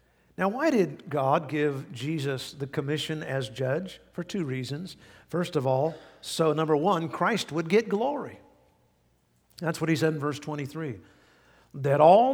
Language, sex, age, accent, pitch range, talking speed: English, male, 50-69, American, 130-165 Hz, 155 wpm